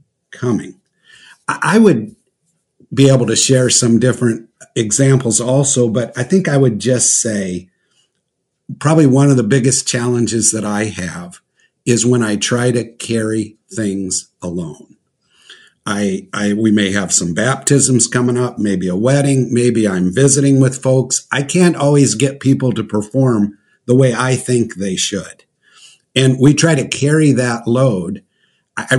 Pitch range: 115-140 Hz